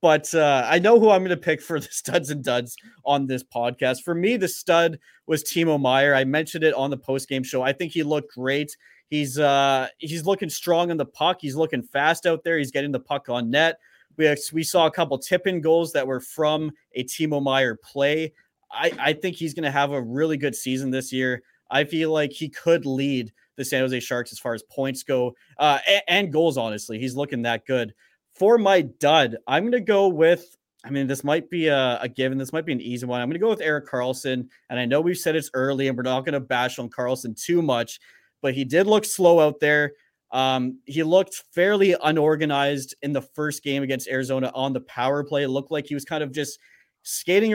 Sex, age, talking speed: male, 20-39, 230 wpm